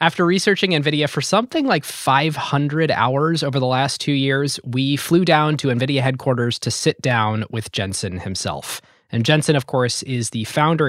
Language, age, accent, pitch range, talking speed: English, 20-39, American, 125-160 Hz, 175 wpm